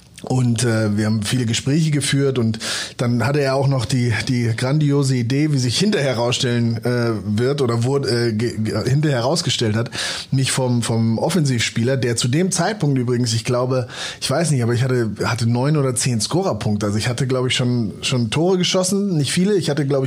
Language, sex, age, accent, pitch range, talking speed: German, male, 30-49, German, 115-140 Hz, 200 wpm